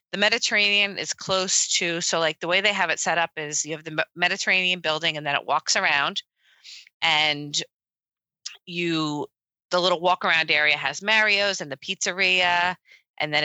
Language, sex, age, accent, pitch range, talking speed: English, female, 30-49, American, 150-185 Hz, 175 wpm